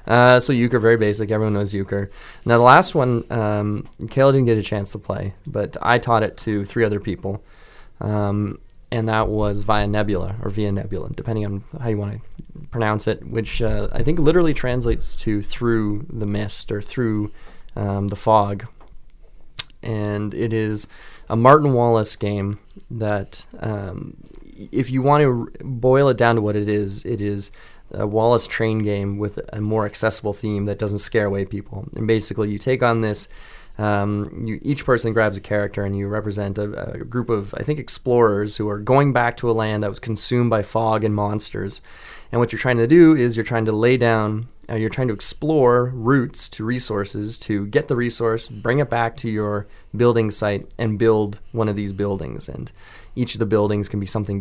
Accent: American